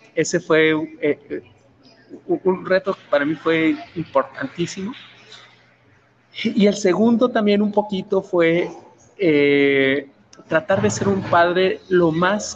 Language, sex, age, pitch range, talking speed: Spanish, male, 40-59, 155-195 Hz, 120 wpm